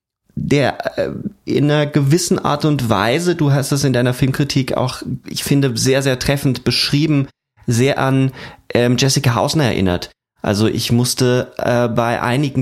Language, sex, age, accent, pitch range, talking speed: German, male, 30-49, German, 105-125 Hz, 155 wpm